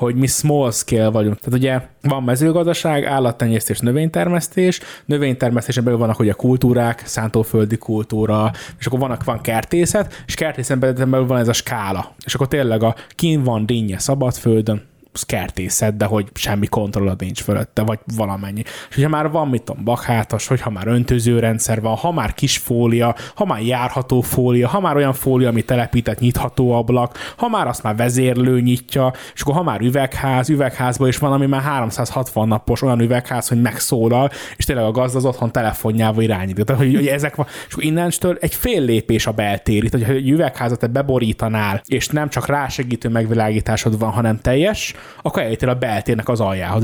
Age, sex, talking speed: 20-39, male, 175 wpm